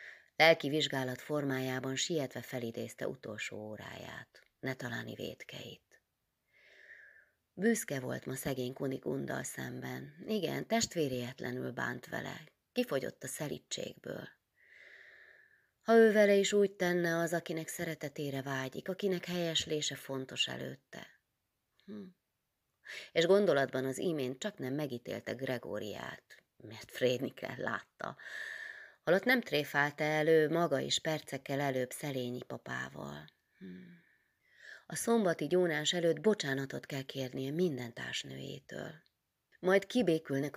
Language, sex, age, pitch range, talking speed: Hungarian, female, 30-49, 125-175 Hz, 105 wpm